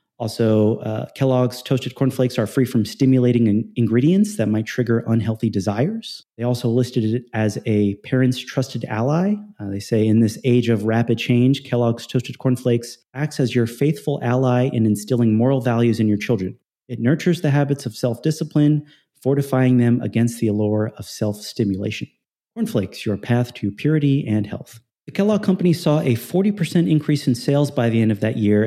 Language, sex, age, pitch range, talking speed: English, male, 30-49, 110-130 Hz, 180 wpm